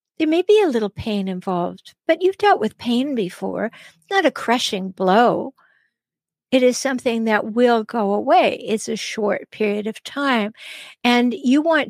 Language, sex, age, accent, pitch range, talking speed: English, female, 60-79, American, 200-250 Hz, 170 wpm